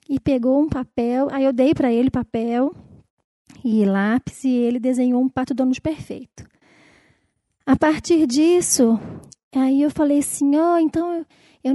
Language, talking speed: Portuguese, 155 wpm